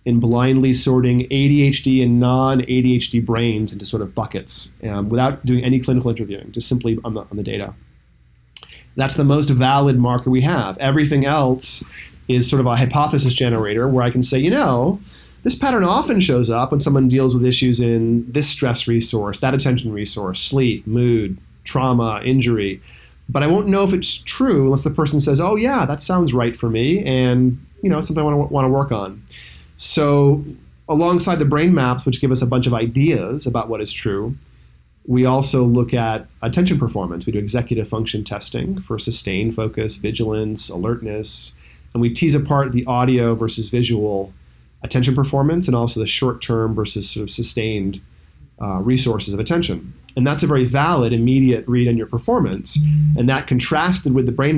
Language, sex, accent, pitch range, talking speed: English, male, American, 110-135 Hz, 180 wpm